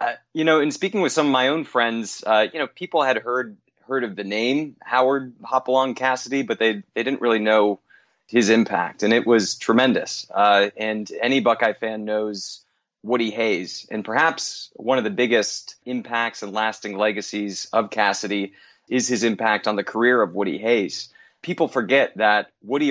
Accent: American